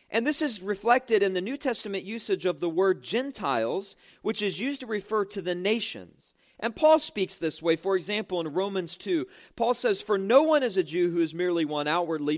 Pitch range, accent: 185-250 Hz, American